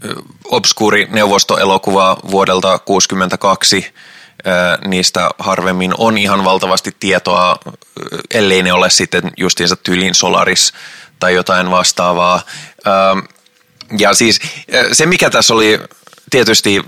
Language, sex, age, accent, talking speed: Finnish, male, 20-39, native, 95 wpm